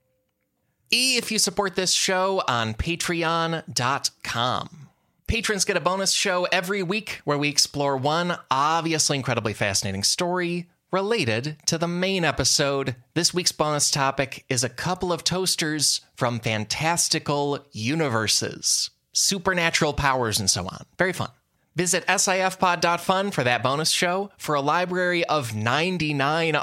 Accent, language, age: American, English, 20-39